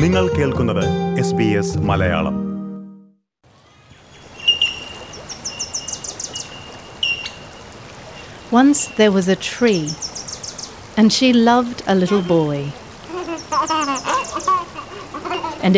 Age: 40-59